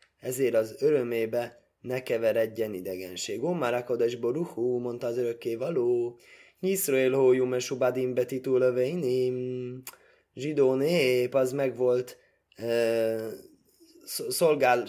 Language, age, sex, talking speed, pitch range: Hungarian, 20-39, male, 100 wpm, 105-145 Hz